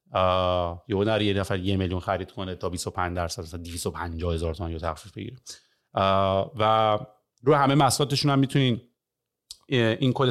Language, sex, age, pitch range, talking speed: Persian, male, 30-49, 100-140 Hz, 140 wpm